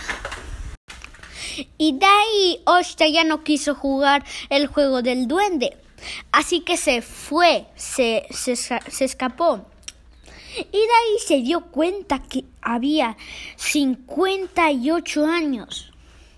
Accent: Mexican